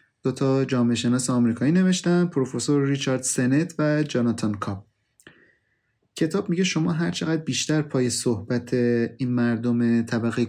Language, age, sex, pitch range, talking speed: Persian, 30-49, male, 115-145 Hz, 125 wpm